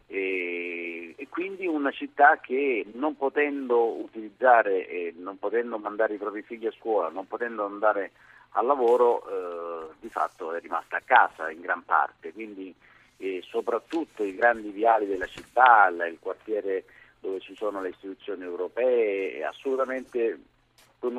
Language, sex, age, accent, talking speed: Italian, male, 50-69, native, 140 wpm